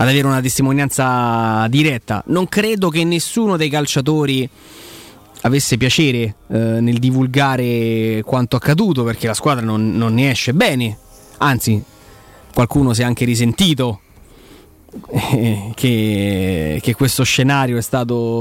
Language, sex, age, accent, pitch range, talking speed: Italian, male, 20-39, native, 115-145 Hz, 125 wpm